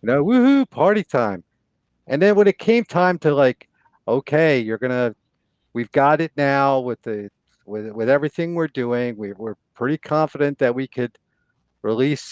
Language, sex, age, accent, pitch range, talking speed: English, male, 50-69, American, 110-145 Hz, 170 wpm